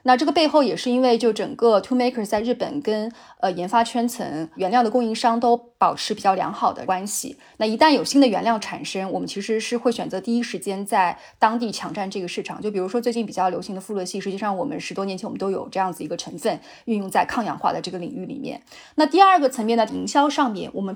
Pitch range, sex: 200-255 Hz, female